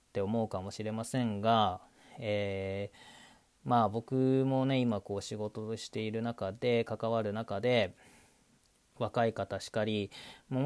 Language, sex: Japanese, male